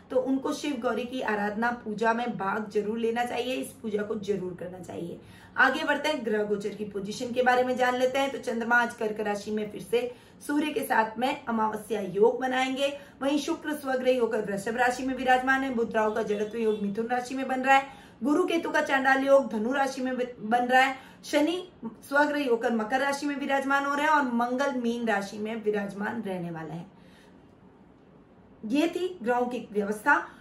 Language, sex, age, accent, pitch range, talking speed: Hindi, female, 20-39, native, 220-270 Hz, 195 wpm